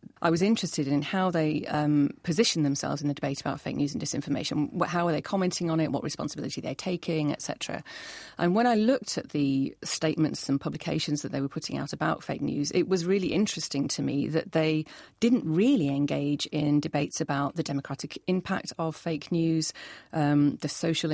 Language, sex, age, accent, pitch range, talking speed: English, female, 30-49, British, 145-175 Hz, 195 wpm